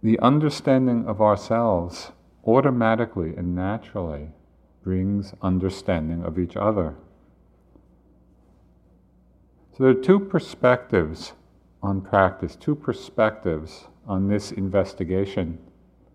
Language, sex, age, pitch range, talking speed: English, male, 50-69, 75-115 Hz, 90 wpm